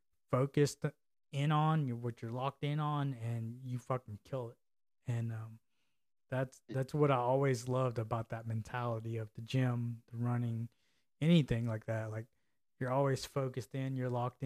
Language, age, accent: English, 20-39, American